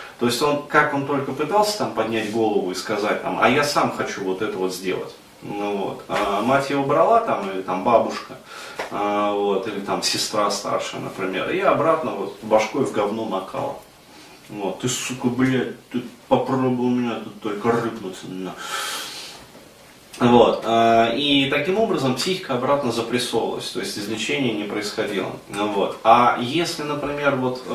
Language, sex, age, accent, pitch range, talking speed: Russian, male, 30-49, native, 110-140 Hz, 160 wpm